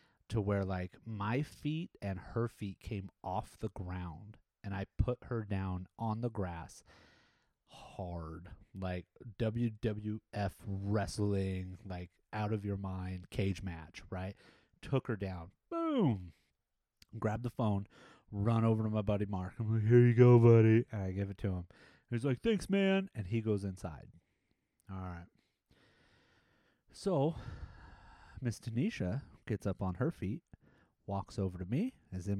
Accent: American